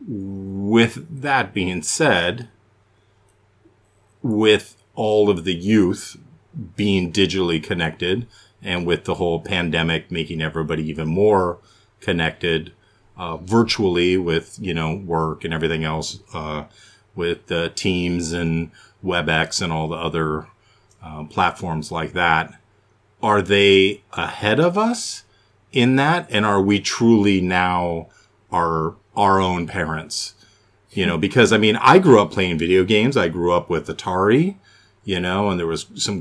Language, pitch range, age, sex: English, 85-105 Hz, 40-59, male